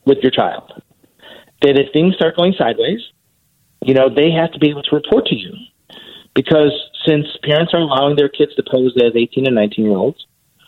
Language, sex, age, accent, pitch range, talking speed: English, male, 40-59, American, 130-180 Hz, 195 wpm